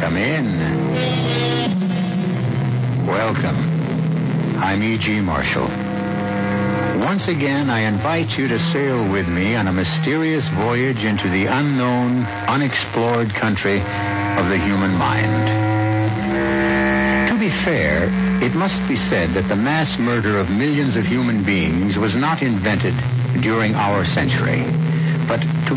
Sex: male